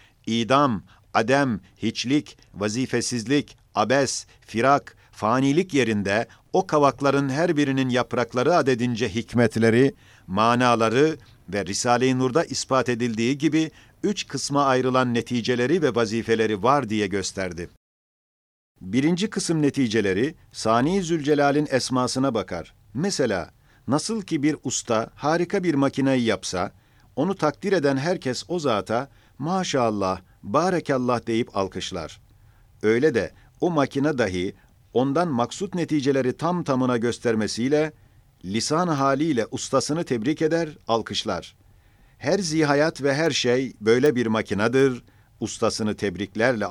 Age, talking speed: 50-69, 110 wpm